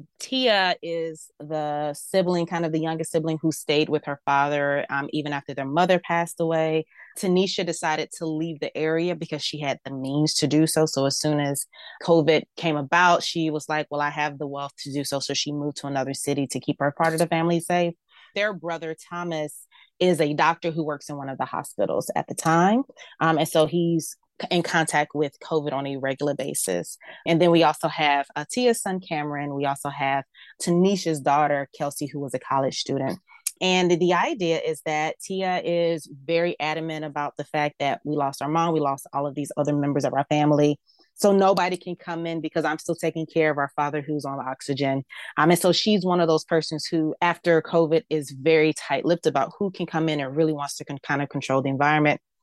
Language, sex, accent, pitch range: English, female, American, 145-170 Hz